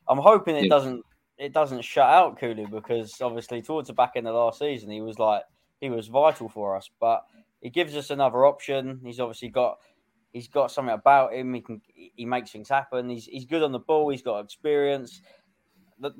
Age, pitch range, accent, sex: 20-39, 110-140 Hz, British, male